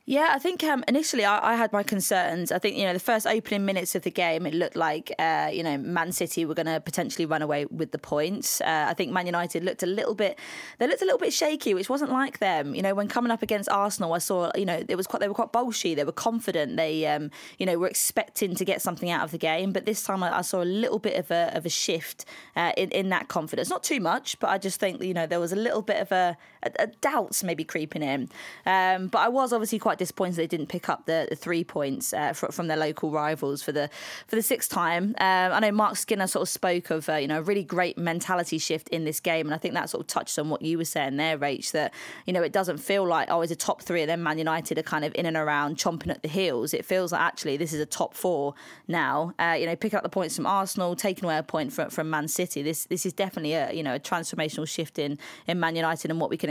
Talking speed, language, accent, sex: 280 wpm, English, British, female